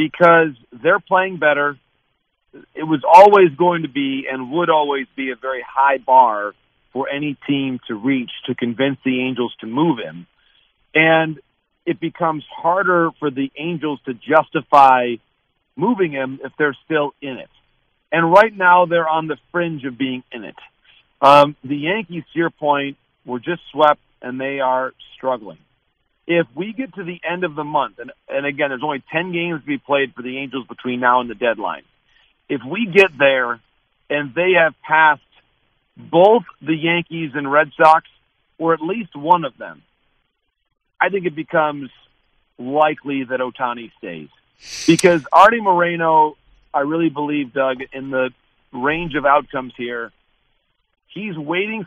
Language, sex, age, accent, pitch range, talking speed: English, male, 50-69, American, 130-165 Hz, 160 wpm